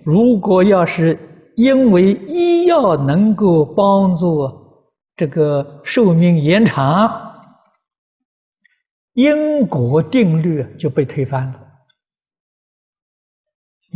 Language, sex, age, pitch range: Chinese, male, 60-79, 150-225 Hz